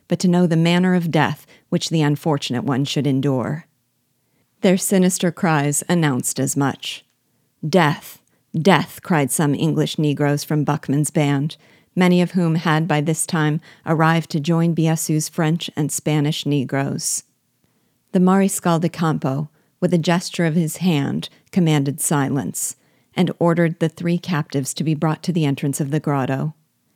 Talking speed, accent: 155 wpm, American